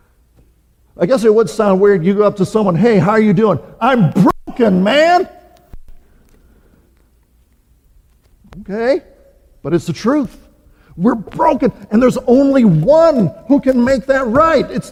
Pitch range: 200-265 Hz